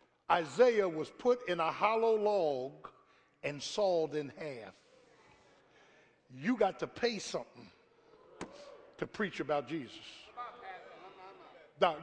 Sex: male